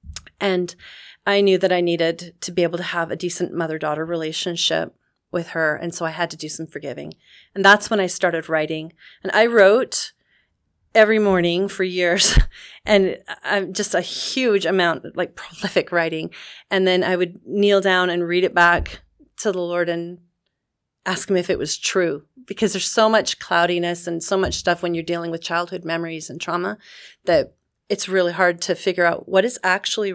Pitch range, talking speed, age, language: 175-205 Hz, 185 wpm, 30-49, English